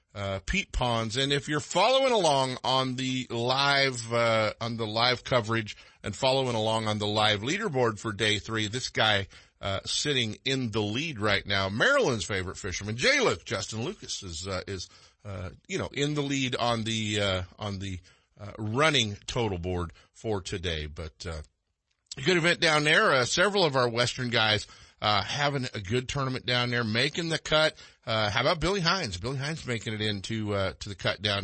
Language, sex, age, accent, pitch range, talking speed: English, male, 50-69, American, 100-135 Hz, 190 wpm